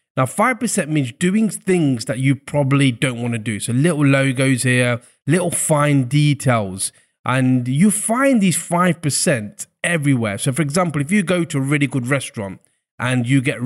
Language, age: English, 30-49